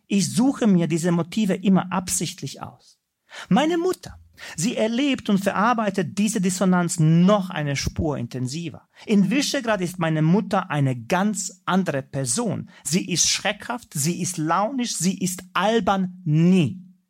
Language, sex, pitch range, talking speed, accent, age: German, male, 175-225 Hz, 135 wpm, German, 40-59